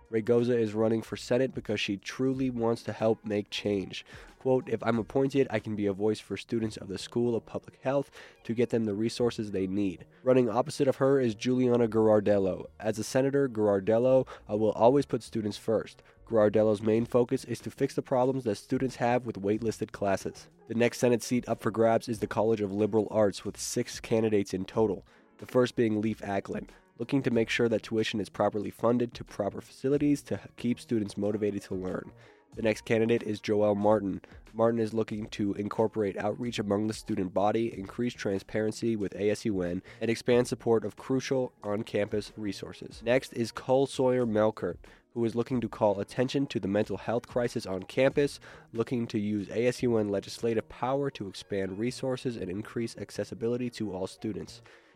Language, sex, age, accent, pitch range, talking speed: English, male, 20-39, American, 105-120 Hz, 185 wpm